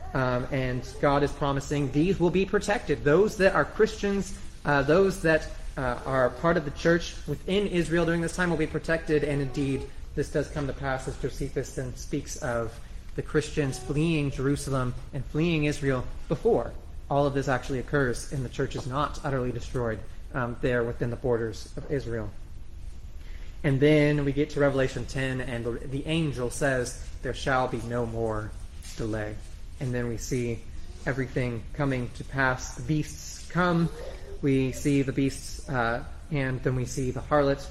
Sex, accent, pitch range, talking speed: male, American, 120-145 Hz, 175 wpm